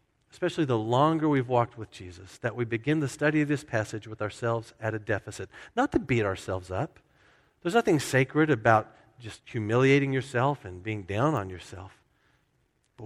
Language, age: English, 50-69